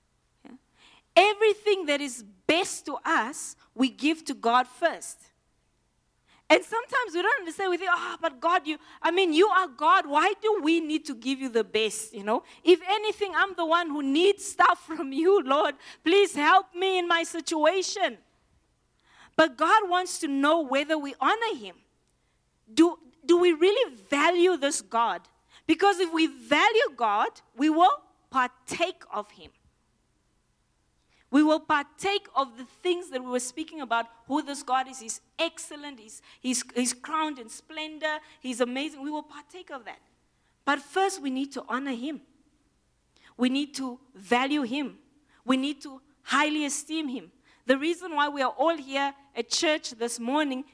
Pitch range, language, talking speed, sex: 255-340 Hz, English, 165 wpm, female